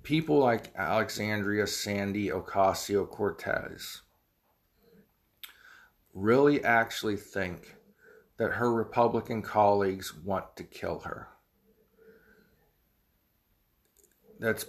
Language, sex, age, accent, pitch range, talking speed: English, male, 50-69, American, 95-125 Hz, 70 wpm